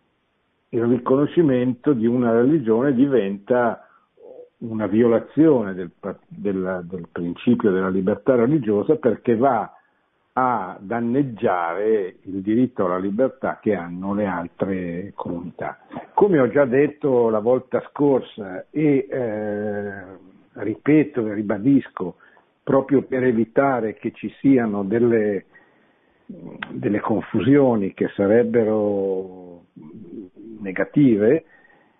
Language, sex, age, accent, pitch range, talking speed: Italian, male, 60-79, native, 100-135 Hz, 95 wpm